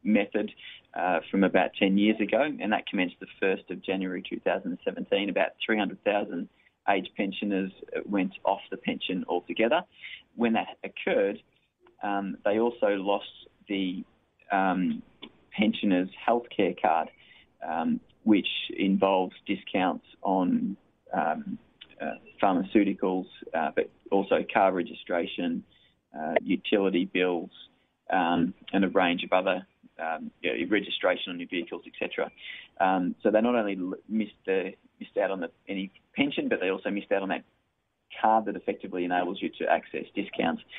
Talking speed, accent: 140 wpm, Australian